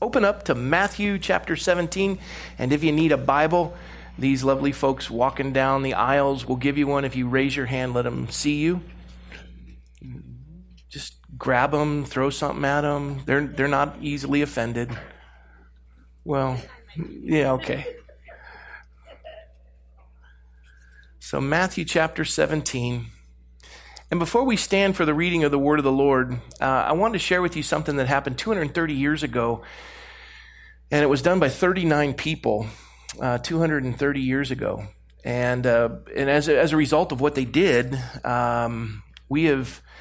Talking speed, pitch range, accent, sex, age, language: 155 wpm, 120-150 Hz, American, male, 40-59, English